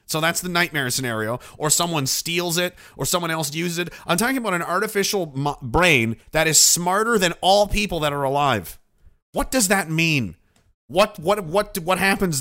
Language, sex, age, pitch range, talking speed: English, male, 30-49, 130-175 Hz, 185 wpm